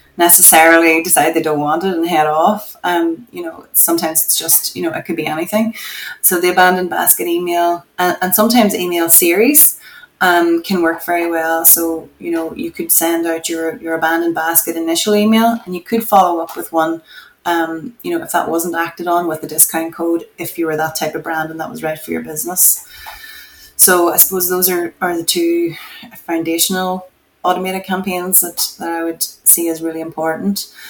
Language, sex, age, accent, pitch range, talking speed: English, female, 20-39, Irish, 165-190 Hz, 195 wpm